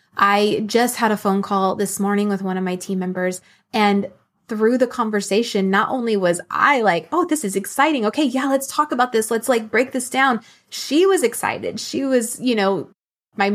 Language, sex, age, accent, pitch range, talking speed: English, female, 20-39, American, 190-240 Hz, 205 wpm